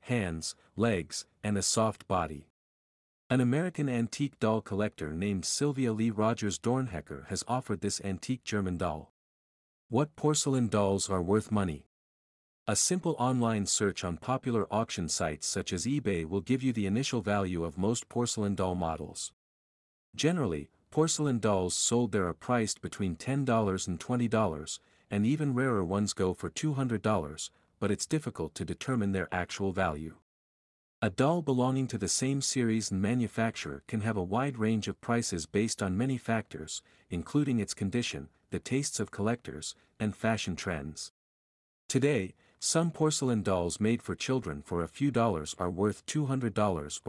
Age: 50-69